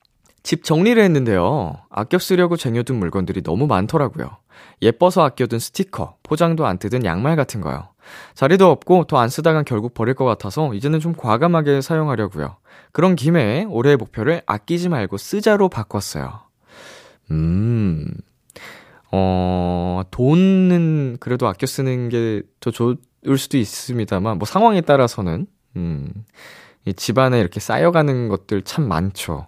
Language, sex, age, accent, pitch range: Korean, male, 20-39, native, 100-160 Hz